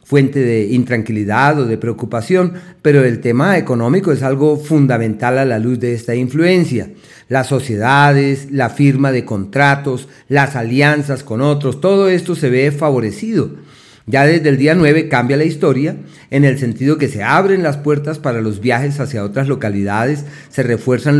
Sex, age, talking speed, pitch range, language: male, 40-59, 165 wpm, 125-150 Hz, Spanish